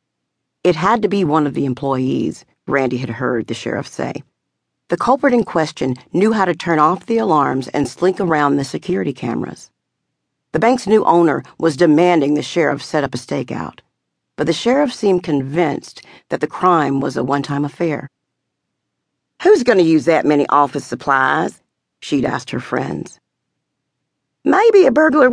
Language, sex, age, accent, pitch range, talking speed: English, female, 50-69, American, 140-195 Hz, 165 wpm